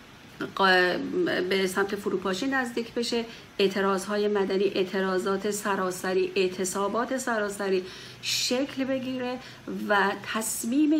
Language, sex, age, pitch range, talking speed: Persian, female, 40-59, 195-230 Hz, 85 wpm